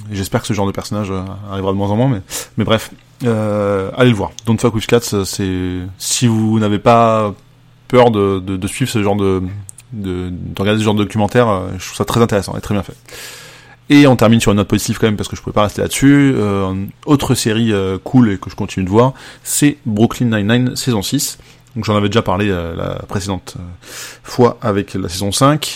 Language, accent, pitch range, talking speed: French, French, 100-120 Hz, 240 wpm